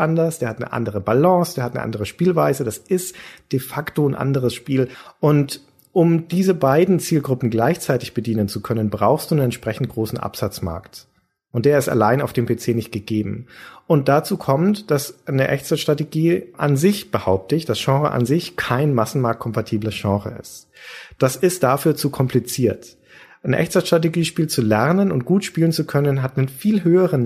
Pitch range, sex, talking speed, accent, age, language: 120-155 Hz, male, 170 wpm, German, 40-59, German